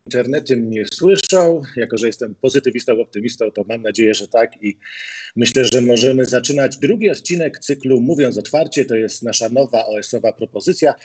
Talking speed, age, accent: 160 wpm, 40-59, native